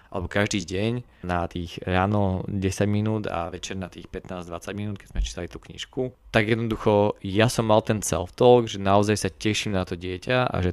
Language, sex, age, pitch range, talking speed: Slovak, male, 20-39, 90-105 Hz, 200 wpm